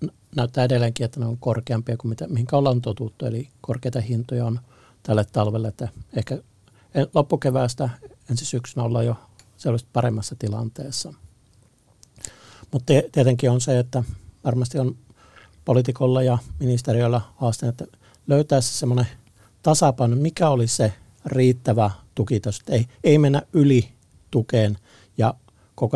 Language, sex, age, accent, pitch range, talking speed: Finnish, male, 60-79, native, 115-130 Hz, 125 wpm